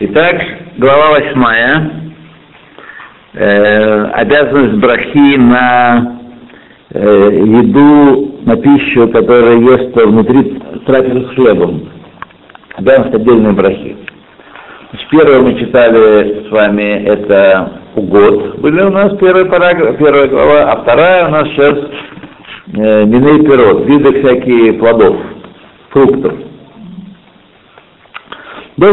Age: 50-69